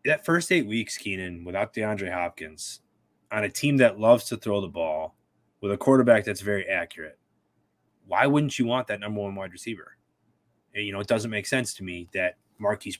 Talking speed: 200 wpm